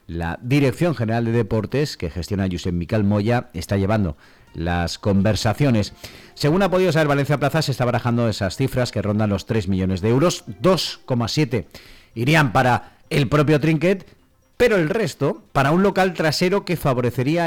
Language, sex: Spanish, male